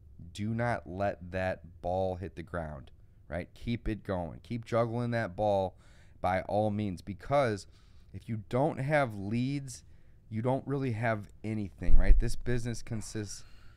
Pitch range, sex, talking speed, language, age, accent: 95-115 Hz, male, 150 wpm, English, 30-49, American